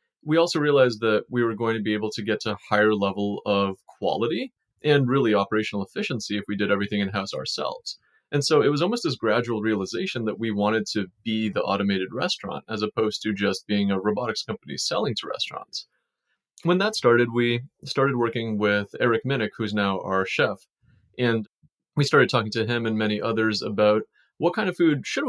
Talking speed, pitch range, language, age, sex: 195 wpm, 105-120 Hz, English, 30-49, male